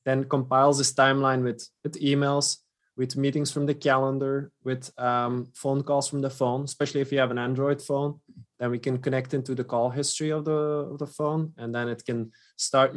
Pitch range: 125-150 Hz